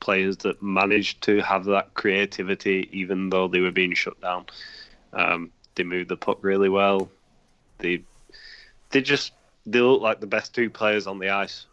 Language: English